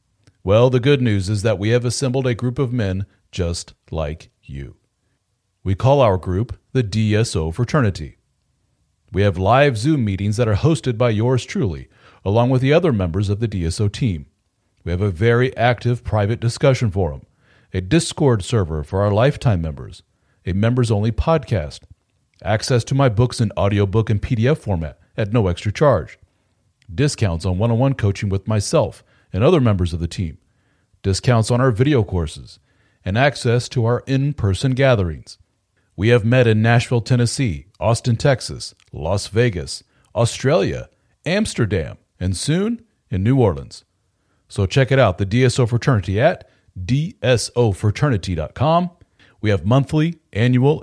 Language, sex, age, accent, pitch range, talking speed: English, male, 40-59, American, 95-130 Hz, 150 wpm